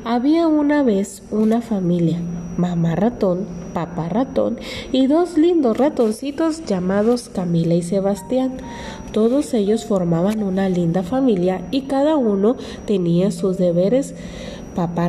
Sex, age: female, 30-49